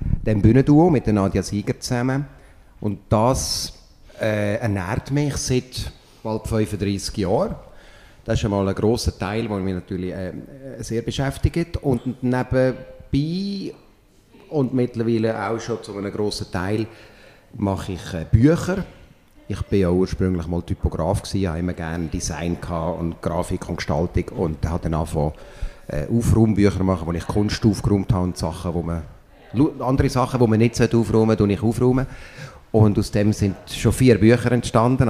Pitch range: 95-120 Hz